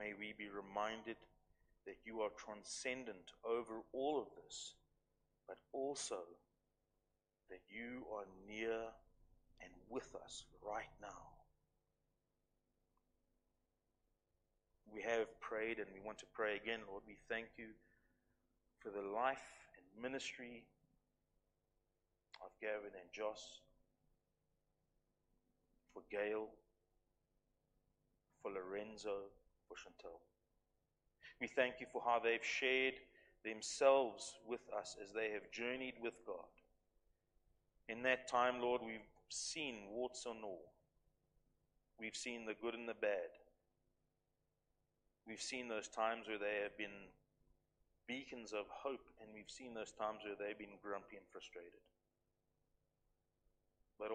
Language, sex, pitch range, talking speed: English, male, 100-120 Hz, 115 wpm